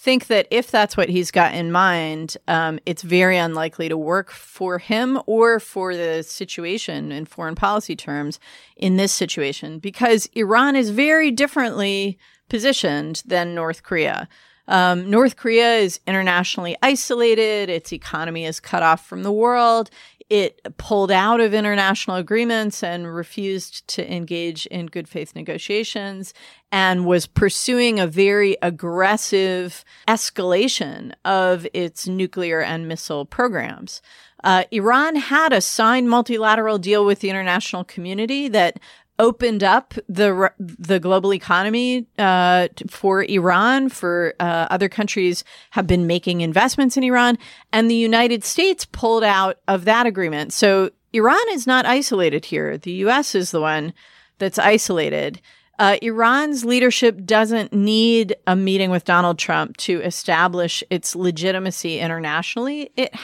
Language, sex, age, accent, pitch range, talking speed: English, female, 40-59, American, 175-230 Hz, 140 wpm